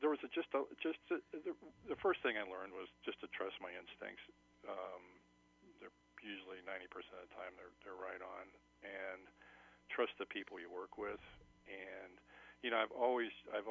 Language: English